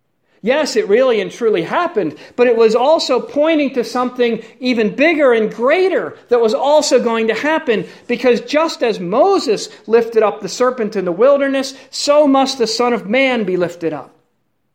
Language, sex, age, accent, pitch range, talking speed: English, male, 50-69, American, 165-255 Hz, 175 wpm